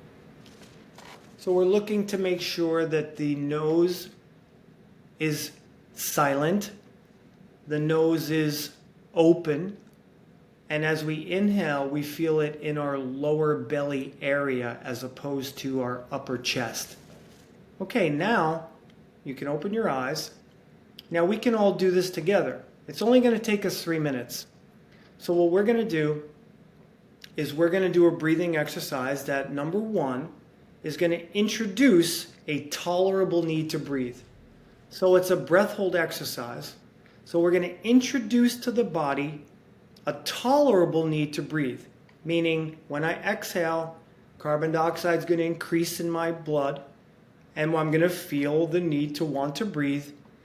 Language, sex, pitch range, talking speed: English, male, 150-190 Hz, 145 wpm